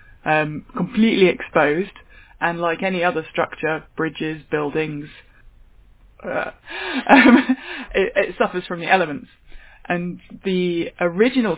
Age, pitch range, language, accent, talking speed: 20-39, 155-185 Hz, English, British, 110 wpm